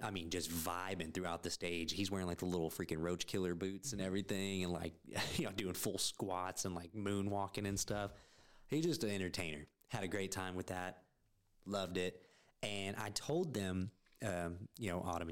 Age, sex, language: 20-39, male, English